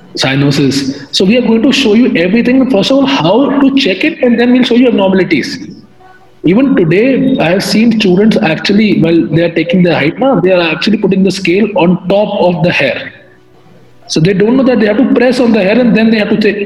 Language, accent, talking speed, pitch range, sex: Hindi, native, 235 wpm, 170-230 Hz, male